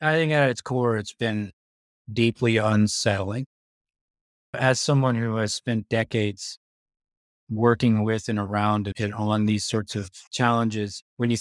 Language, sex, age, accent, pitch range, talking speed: English, male, 30-49, American, 100-115 Hz, 140 wpm